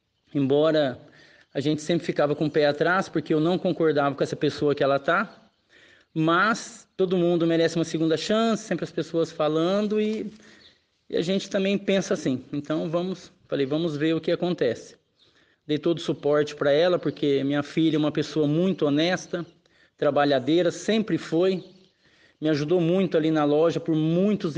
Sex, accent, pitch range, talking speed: male, Brazilian, 150-175 Hz, 170 wpm